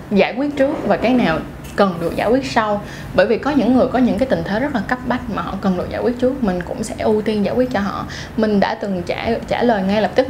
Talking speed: 290 wpm